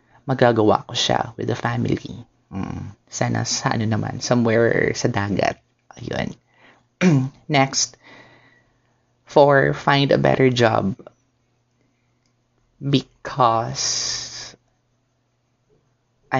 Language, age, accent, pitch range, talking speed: Filipino, 20-39, native, 115-140 Hz, 80 wpm